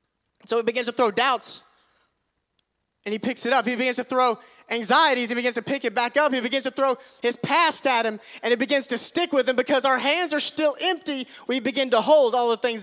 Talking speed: 240 wpm